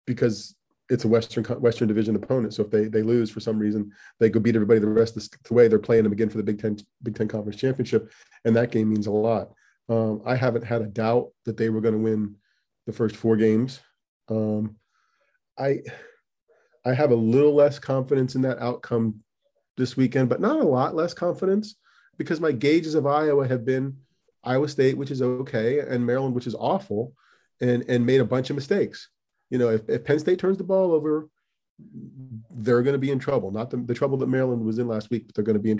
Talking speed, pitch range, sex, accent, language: 225 wpm, 110-135 Hz, male, American, English